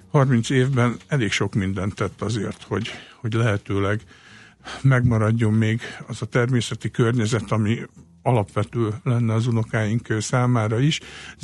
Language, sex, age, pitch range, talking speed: Hungarian, male, 60-79, 110-135 Hz, 120 wpm